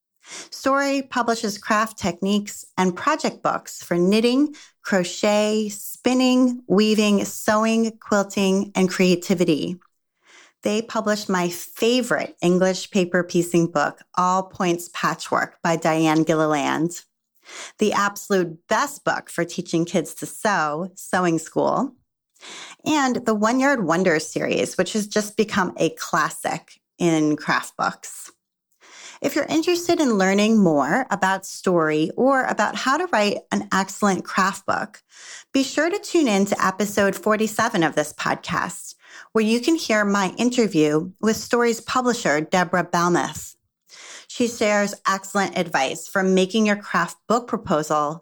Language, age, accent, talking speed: English, 30-49, American, 130 wpm